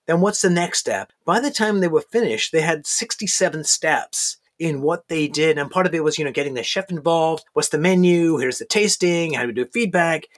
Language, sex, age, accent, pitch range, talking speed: English, male, 30-49, American, 145-180 Hz, 235 wpm